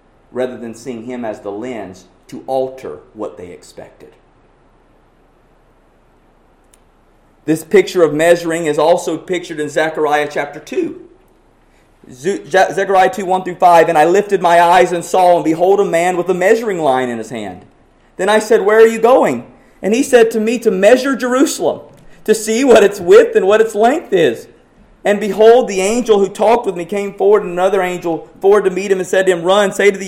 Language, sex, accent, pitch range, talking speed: English, male, American, 140-205 Hz, 190 wpm